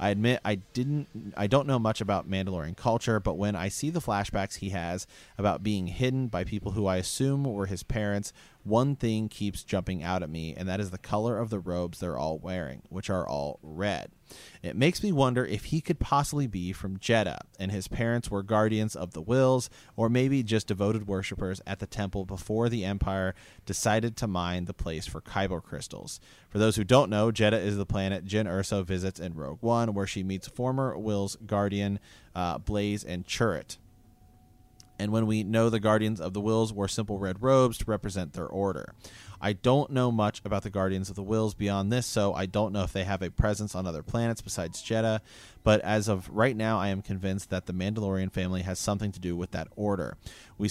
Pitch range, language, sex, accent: 95-110 Hz, English, male, American